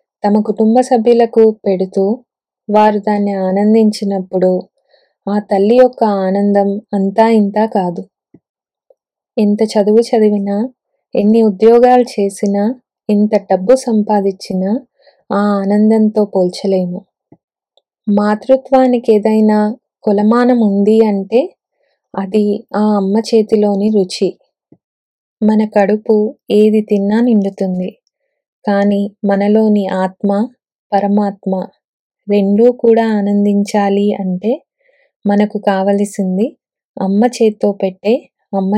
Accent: native